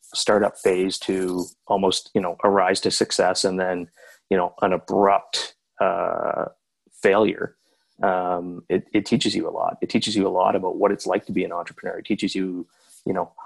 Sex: male